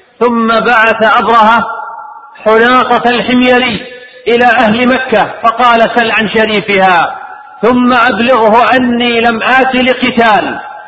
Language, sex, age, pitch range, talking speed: Arabic, male, 50-69, 220-255 Hz, 100 wpm